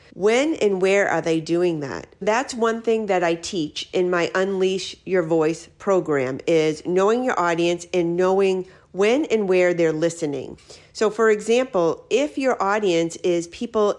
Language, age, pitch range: English, 50-69, 165-205 Hz